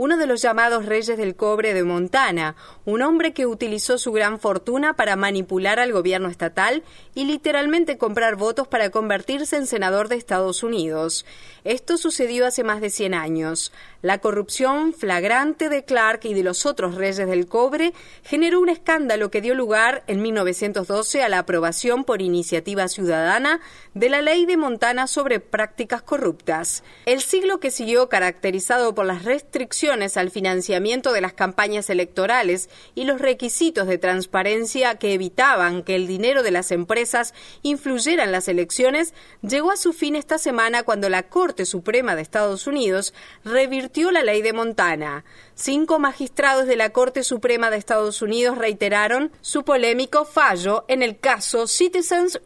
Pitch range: 195-275 Hz